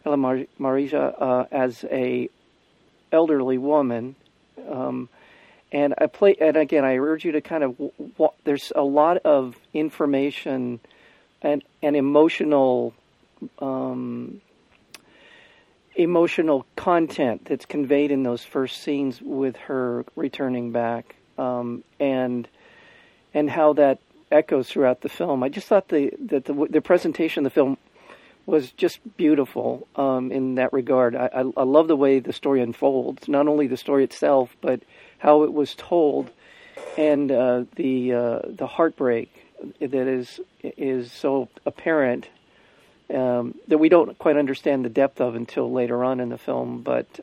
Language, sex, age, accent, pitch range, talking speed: English, male, 50-69, American, 125-150 Hz, 145 wpm